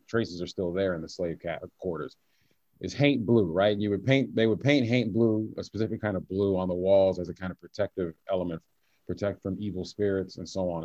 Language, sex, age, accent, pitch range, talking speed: English, male, 40-59, American, 95-125 Hz, 230 wpm